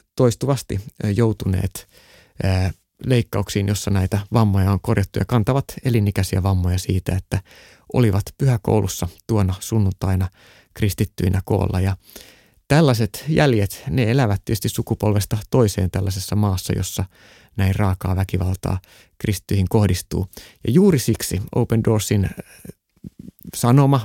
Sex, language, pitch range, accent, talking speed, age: male, Finnish, 95-120 Hz, native, 105 wpm, 30-49